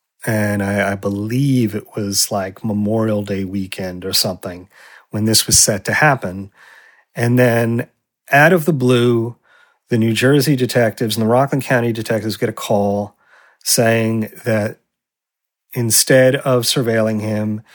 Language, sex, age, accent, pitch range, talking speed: English, male, 40-59, American, 105-120 Hz, 140 wpm